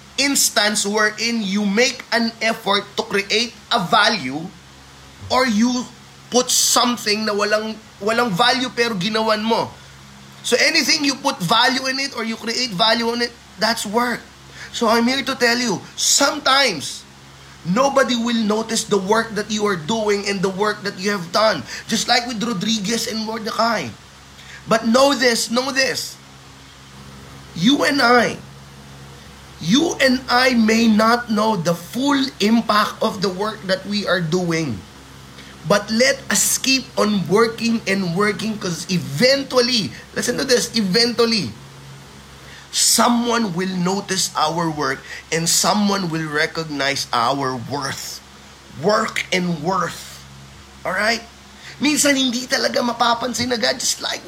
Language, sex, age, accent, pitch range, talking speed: Filipino, male, 20-39, native, 165-240 Hz, 140 wpm